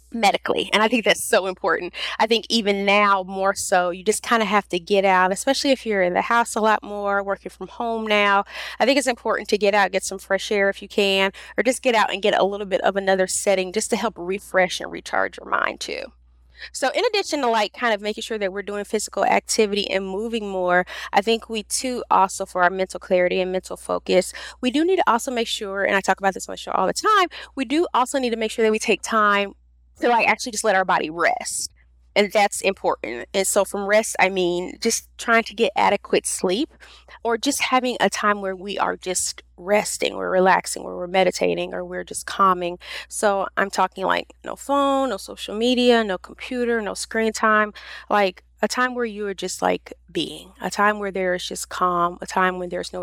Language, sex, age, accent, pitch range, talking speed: English, female, 20-39, American, 185-225 Hz, 230 wpm